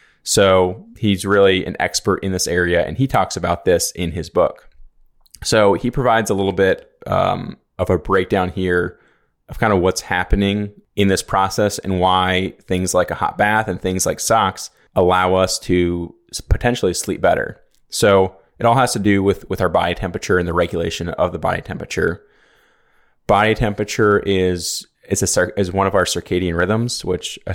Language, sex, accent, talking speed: English, male, American, 180 wpm